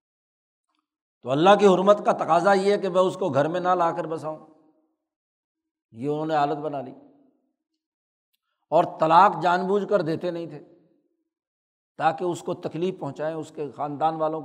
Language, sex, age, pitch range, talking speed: Urdu, male, 60-79, 155-200 Hz, 170 wpm